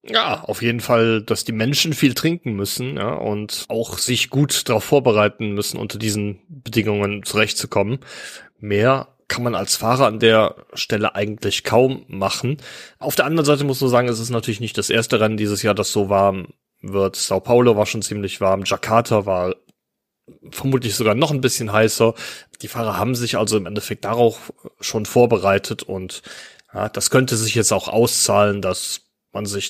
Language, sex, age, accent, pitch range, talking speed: German, male, 30-49, German, 100-125 Hz, 180 wpm